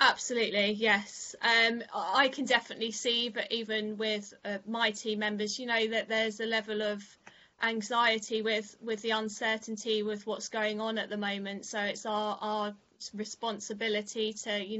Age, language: 20-39, English